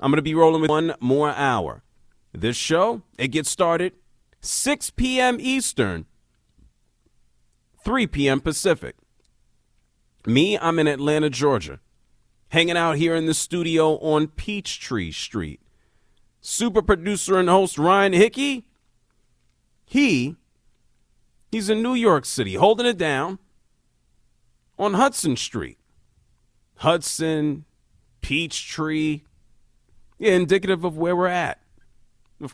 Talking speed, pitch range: 110 wpm, 130-210 Hz